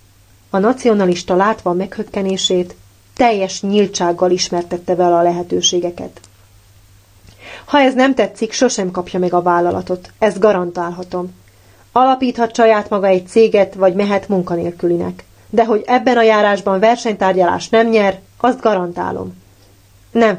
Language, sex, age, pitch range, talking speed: Hungarian, female, 30-49, 170-215 Hz, 120 wpm